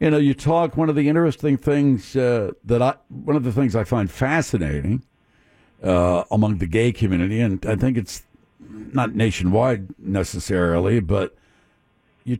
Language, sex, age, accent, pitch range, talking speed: English, male, 60-79, American, 115-145 Hz, 160 wpm